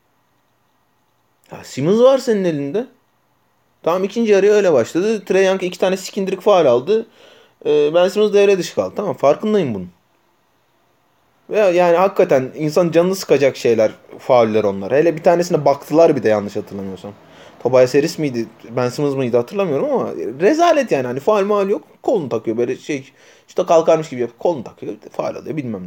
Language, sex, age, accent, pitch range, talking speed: Turkish, male, 30-49, native, 155-220 Hz, 165 wpm